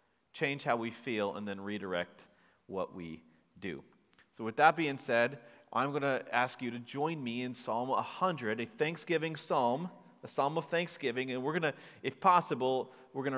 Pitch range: 115-150 Hz